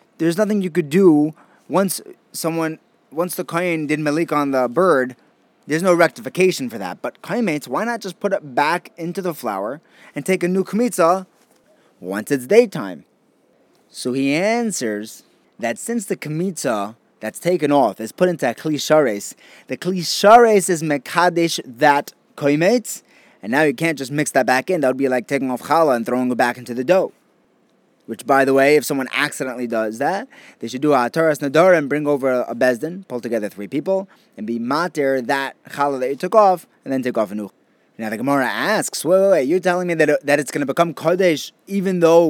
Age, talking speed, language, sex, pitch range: 20-39, 200 wpm, English, male, 135-180 Hz